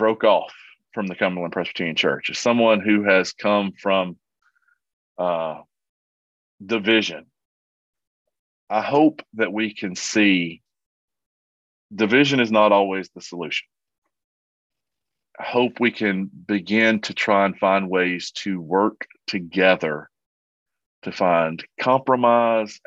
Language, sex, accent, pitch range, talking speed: English, male, American, 90-110 Hz, 115 wpm